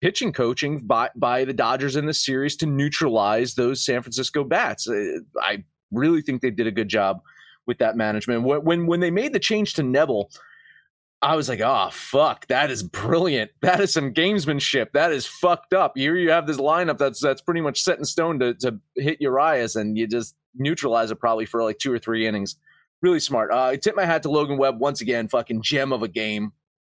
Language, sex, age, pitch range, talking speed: English, male, 30-49, 110-155 Hz, 215 wpm